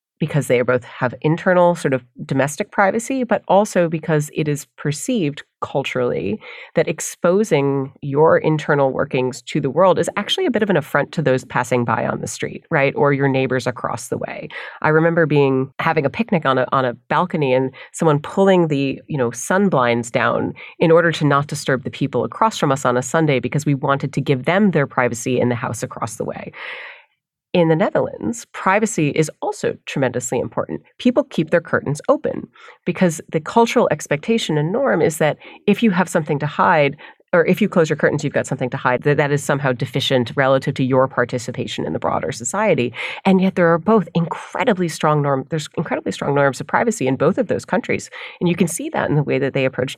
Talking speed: 205 wpm